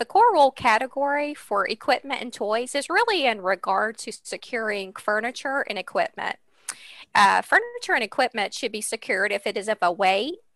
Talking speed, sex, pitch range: 170 wpm, female, 210-280 Hz